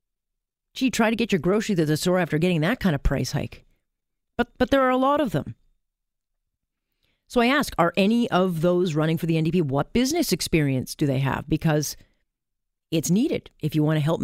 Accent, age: American, 40-59